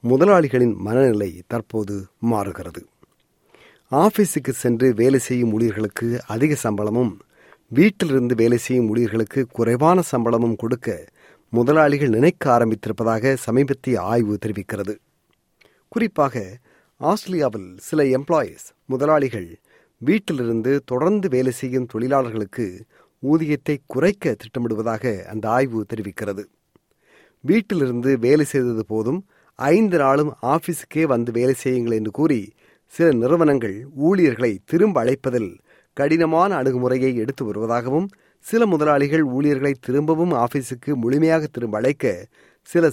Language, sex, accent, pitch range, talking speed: Tamil, male, native, 115-150 Hz, 100 wpm